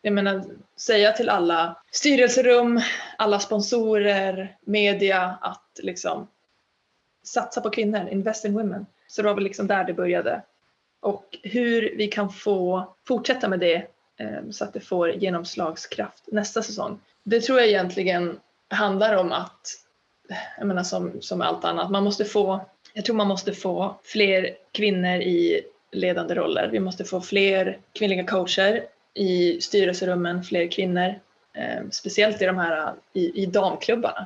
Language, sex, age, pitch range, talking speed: Swedish, female, 20-39, 185-215 Hz, 150 wpm